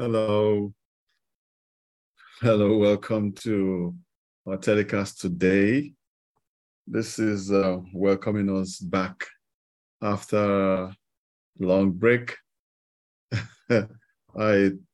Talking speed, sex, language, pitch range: 70 wpm, male, English, 90-105 Hz